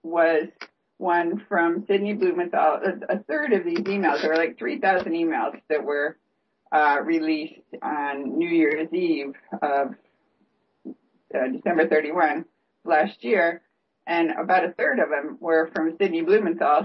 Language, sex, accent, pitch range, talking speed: English, female, American, 145-200 Hz, 140 wpm